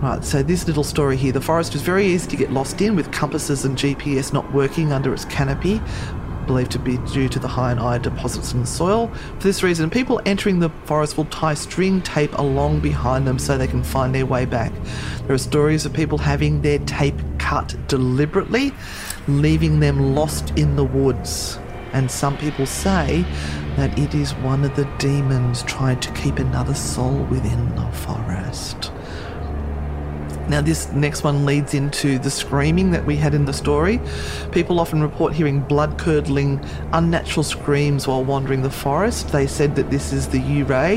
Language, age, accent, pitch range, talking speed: English, 40-59, Australian, 120-150 Hz, 180 wpm